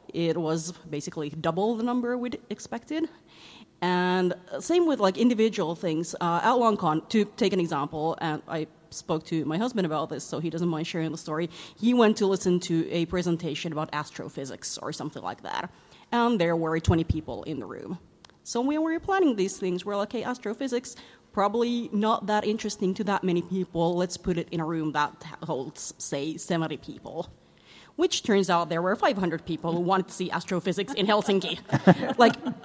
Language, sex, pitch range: Swedish, female, 165-220 Hz